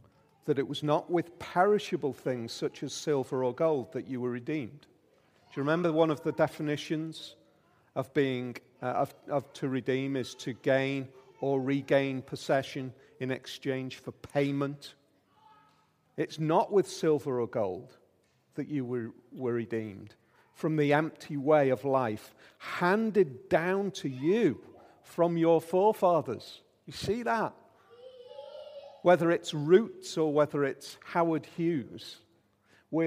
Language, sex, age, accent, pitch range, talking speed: English, male, 50-69, British, 135-175 Hz, 140 wpm